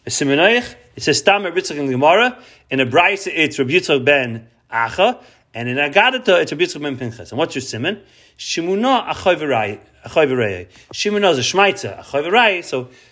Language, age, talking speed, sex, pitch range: English, 40-59, 65 wpm, male, 130-180 Hz